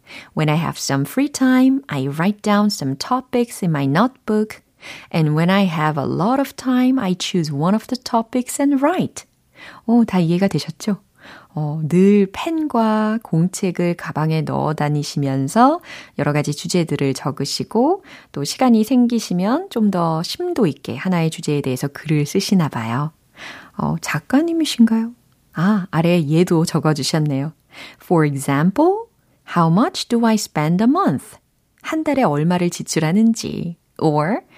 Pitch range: 150-230 Hz